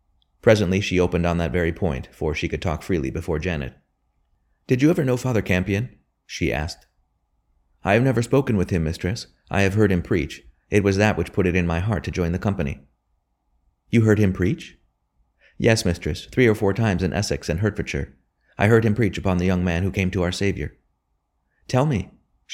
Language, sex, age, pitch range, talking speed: English, male, 30-49, 80-100 Hz, 200 wpm